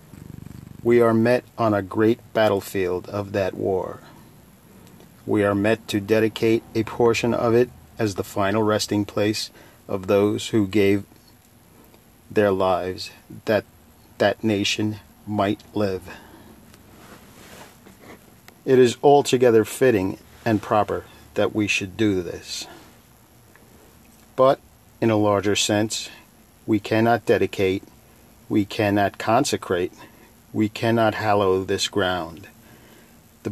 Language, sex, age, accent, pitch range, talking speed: English, male, 40-59, American, 100-115 Hz, 115 wpm